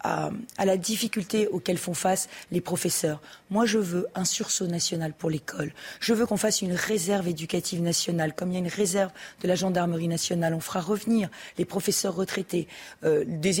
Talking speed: 190 wpm